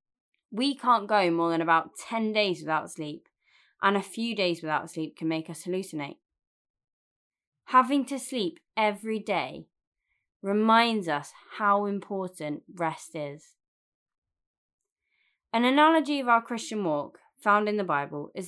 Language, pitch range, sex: English, 165-230 Hz, female